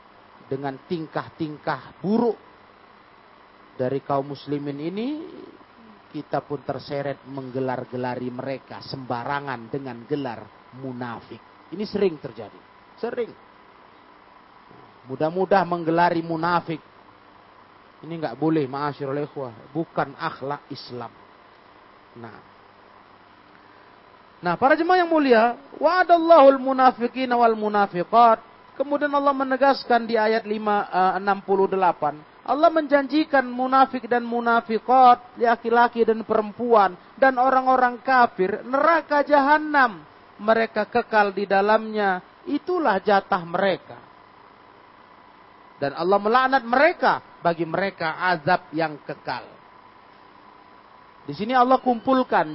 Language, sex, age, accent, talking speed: Indonesian, male, 40-59, native, 95 wpm